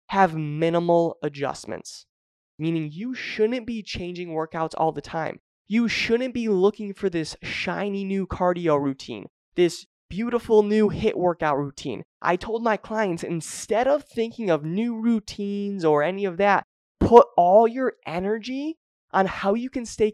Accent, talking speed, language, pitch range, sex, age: American, 150 wpm, English, 160-220 Hz, male, 20-39